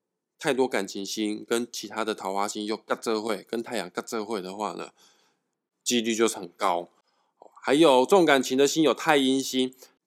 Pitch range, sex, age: 115-145 Hz, male, 20-39